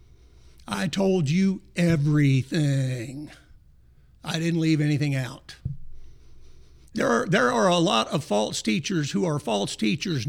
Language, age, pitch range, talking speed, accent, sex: English, 60-79, 145-190 Hz, 130 wpm, American, male